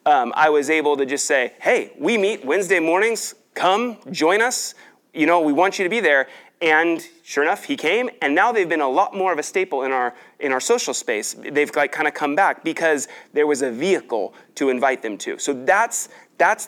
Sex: male